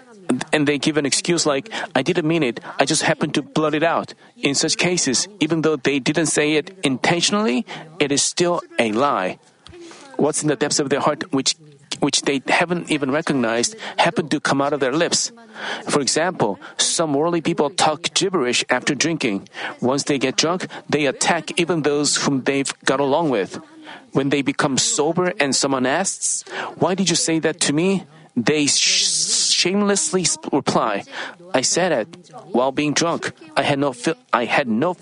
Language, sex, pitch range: Korean, male, 145-175 Hz